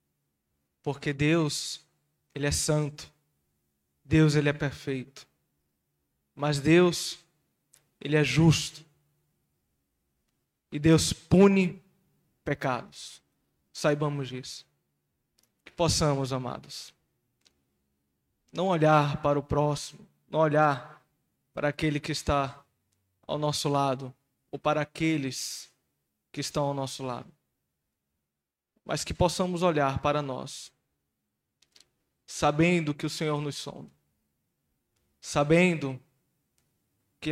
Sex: male